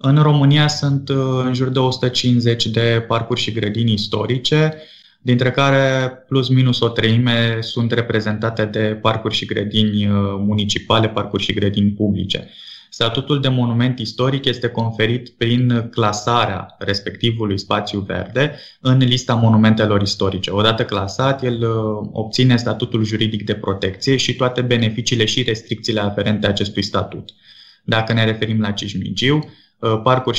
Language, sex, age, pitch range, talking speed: Romanian, male, 20-39, 105-125 Hz, 130 wpm